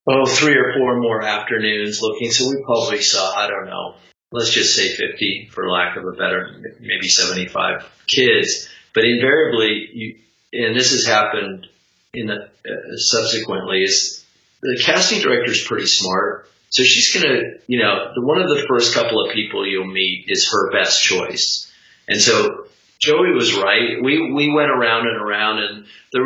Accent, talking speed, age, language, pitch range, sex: American, 160 wpm, 40-59, English, 100-140 Hz, male